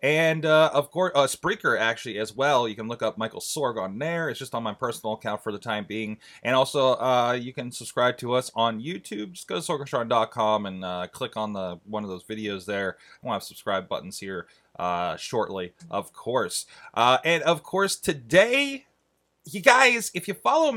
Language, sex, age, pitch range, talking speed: English, male, 30-49, 105-155 Hz, 210 wpm